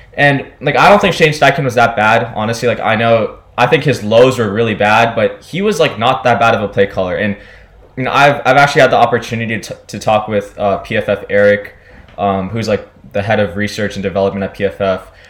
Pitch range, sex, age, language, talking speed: 100-125 Hz, male, 10-29, English, 230 wpm